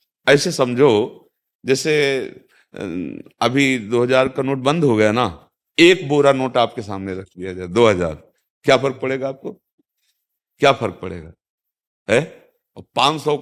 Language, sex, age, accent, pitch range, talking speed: Hindi, male, 50-69, native, 120-170 Hz, 130 wpm